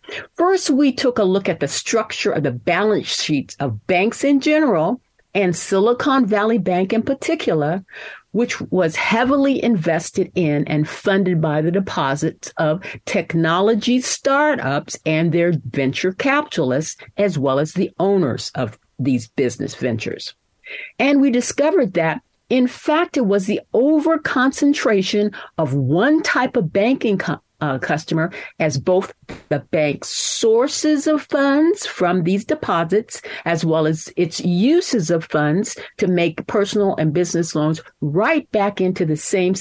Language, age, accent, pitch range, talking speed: English, 50-69, American, 155-245 Hz, 140 wpm